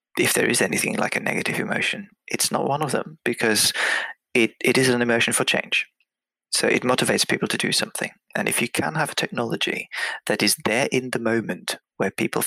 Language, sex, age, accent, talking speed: English, male, 30-49, British, 205 wpm